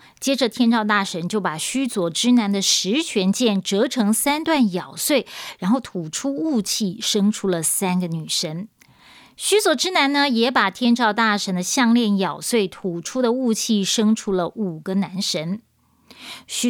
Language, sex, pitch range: Chinese, female, 195-270 Hz